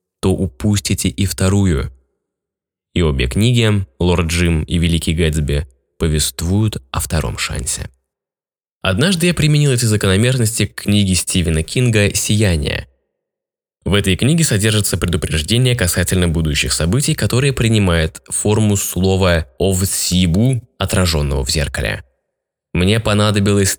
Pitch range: 80-105 Hz